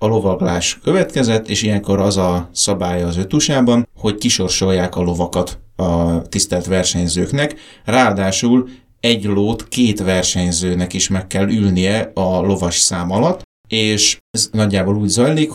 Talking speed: 135 wpm